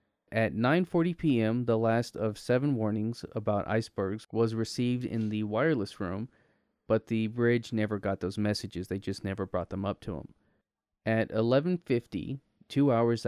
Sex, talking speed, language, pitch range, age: male, 160 wpm, English, 105-120 Hz, 20-39